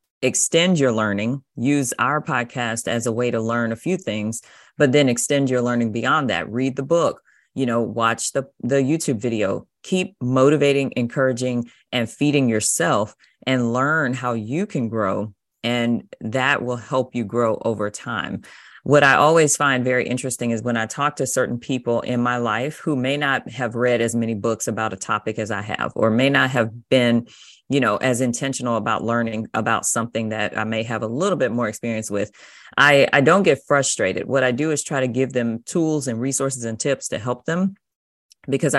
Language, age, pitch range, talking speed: English, 30-49, 115-140 Hz, 195 wpm